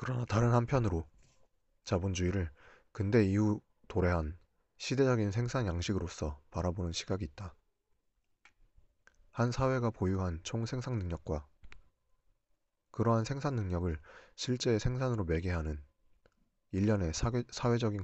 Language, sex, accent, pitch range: Korean, male, native, 85-110 Hz